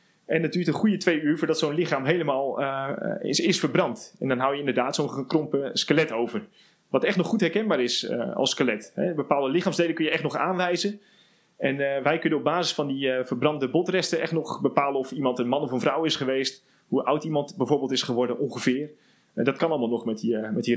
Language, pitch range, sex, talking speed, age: Dutch, 135-175 Hz, male, 235 wpm, 30-49